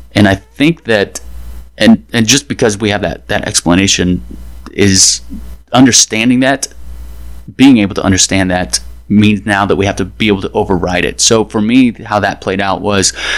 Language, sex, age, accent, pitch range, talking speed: English, male, 30-49, American, 95-110 Hz, 180 wpm